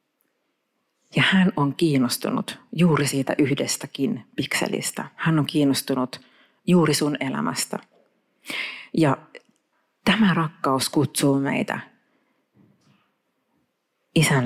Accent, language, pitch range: native, Finnish, 135-165 Hz